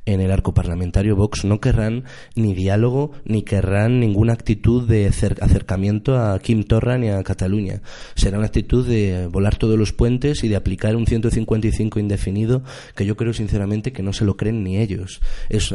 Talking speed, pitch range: 180 wpm, 95-115 Hz